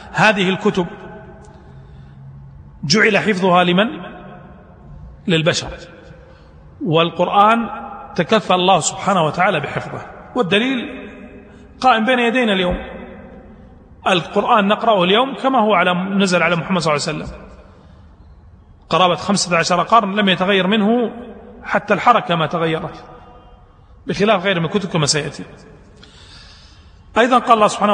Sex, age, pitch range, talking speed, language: male, 40-59, 165-210 Hz, 110 wpm, Arabic